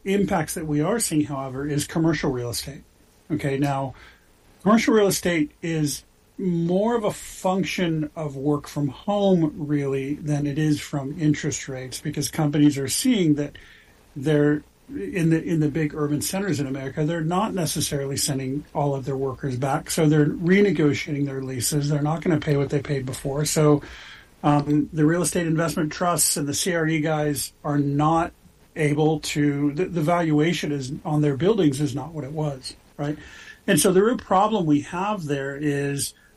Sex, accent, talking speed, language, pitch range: male, American, 175 wpm, English, 145-170 Hz